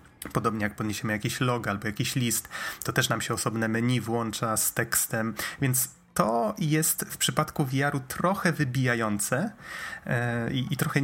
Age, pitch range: 30-49, 110-135 Hz